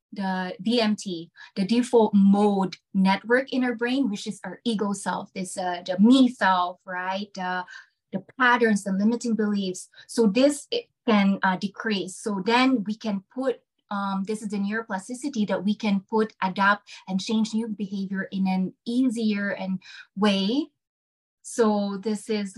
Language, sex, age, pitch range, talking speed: English, female, 20-39, 185-220 Hz, 155 wpm